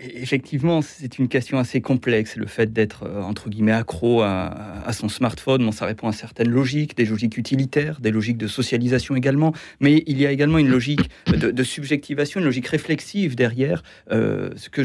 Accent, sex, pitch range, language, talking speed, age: French, male, 115-145 Hz, French, 190 wpm, 40-59